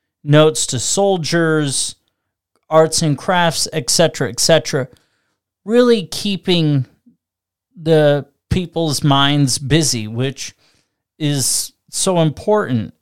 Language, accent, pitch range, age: English, American, 120-160 Hz, 30-49